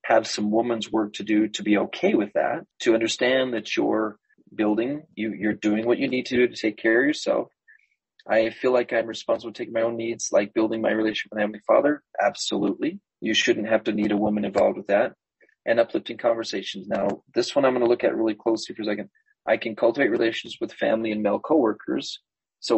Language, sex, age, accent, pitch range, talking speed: English, male, 30-49, Canadian, 105-125 Hz, 220 wpm